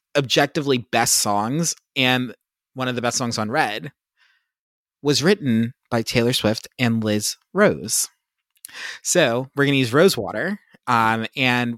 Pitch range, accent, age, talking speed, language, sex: 110-130 Hz, American, 20-39, 140 wpm, English, male